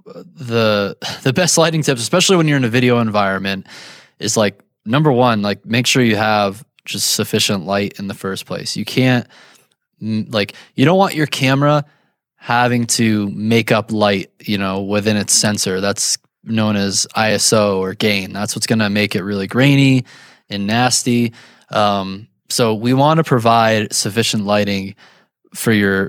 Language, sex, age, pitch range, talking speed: English, male, 20-39, 105-130 Hz, 165 wpm